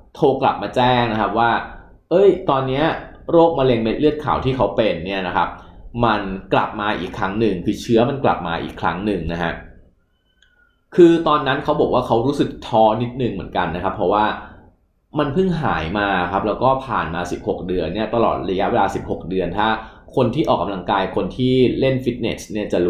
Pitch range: 95-130 Hz